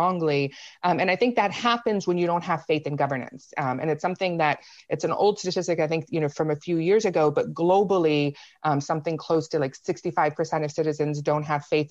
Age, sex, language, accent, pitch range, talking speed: 30-49, female, English, American, 150-175 Hz, 220 wpm